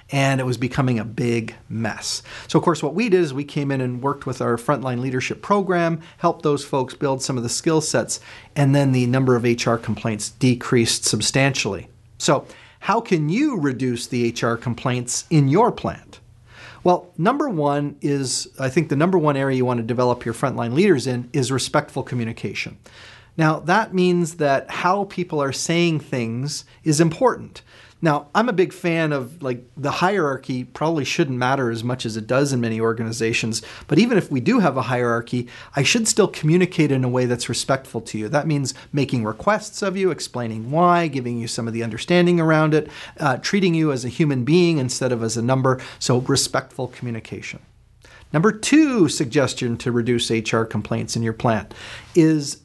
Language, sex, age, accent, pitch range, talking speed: English, male, 40-59, American, 120-160 Hz, 190 wpm